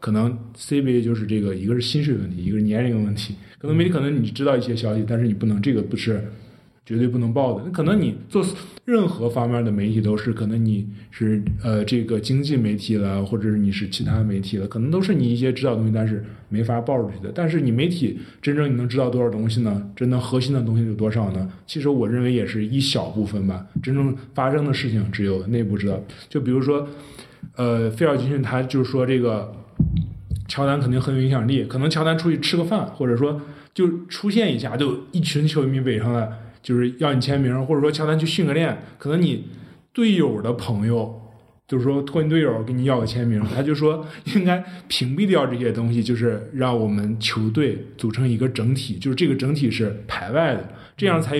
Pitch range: 110-145 Hz